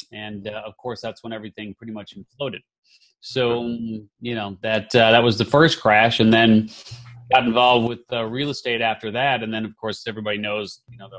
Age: 30-49